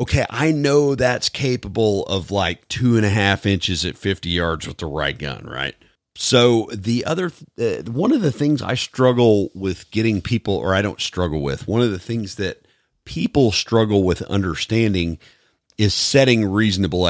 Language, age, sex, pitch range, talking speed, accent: English, 40-59, male, 85-115 Hz, 175 wpm, American